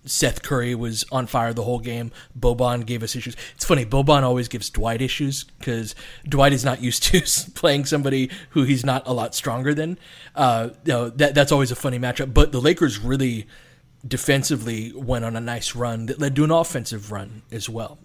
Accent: American